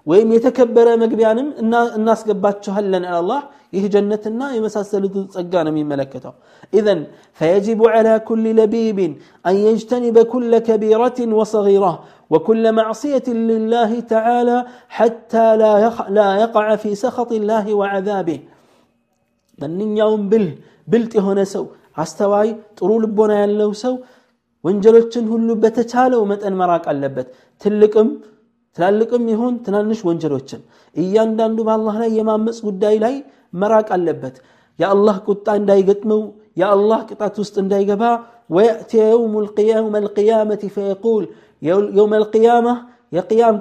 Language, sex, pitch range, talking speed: Amharic, male, 200-230 Hz, 110 wpm